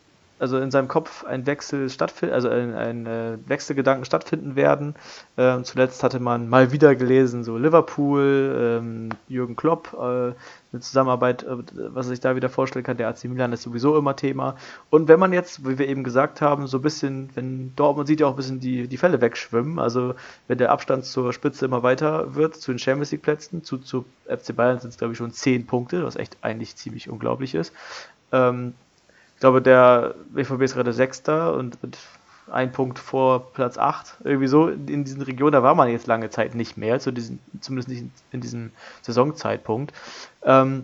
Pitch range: 120-140 Hz